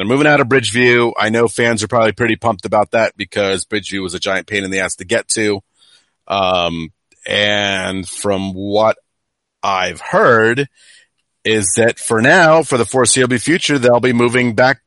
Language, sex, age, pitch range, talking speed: English, male, 30-49, 105-125 Hz, 180 wpm